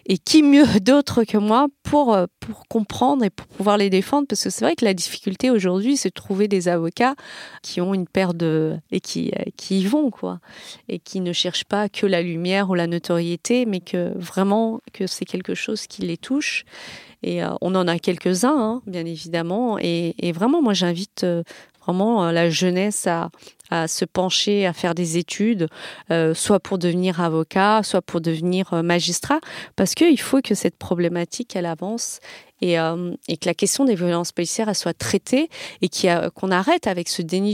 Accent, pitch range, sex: French, 180-230 Hz, female